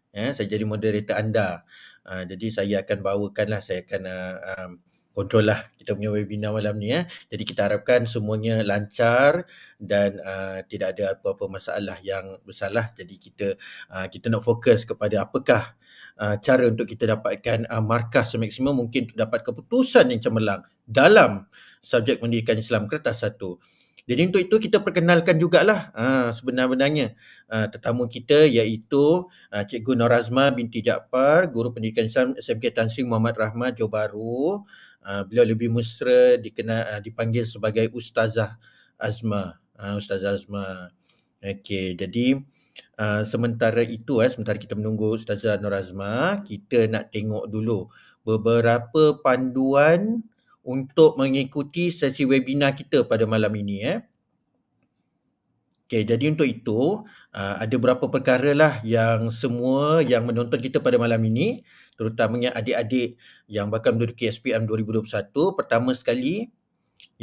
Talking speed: 135 wpm